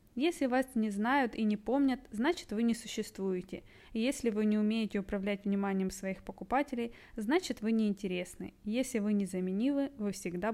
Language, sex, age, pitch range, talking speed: Russian, female, 20-39, 200-245 Hz, 155 wpm